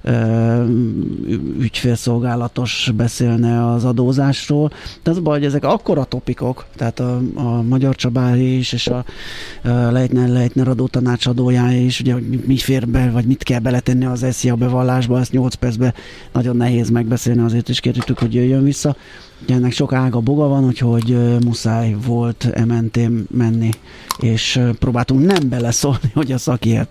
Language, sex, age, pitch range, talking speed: Hungarian, male, 30-49, 120-130 Hz, 145 wpm